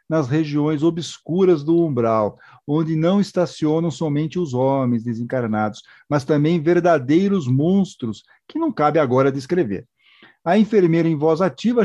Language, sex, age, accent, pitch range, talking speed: Portuguese, male, 50-69, Brazilian, 145-190 Hz, 130 wpm